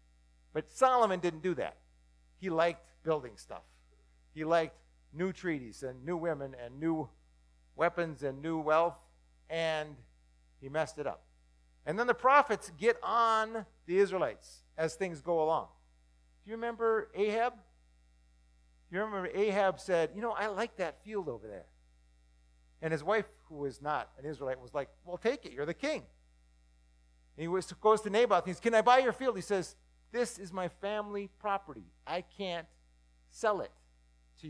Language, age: English, 50-69